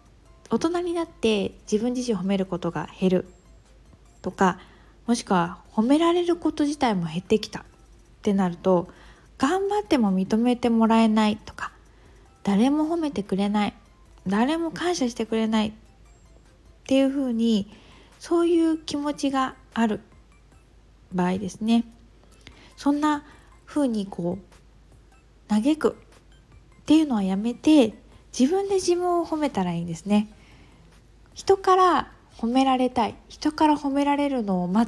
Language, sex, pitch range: Japanese, female, 200-300 Hz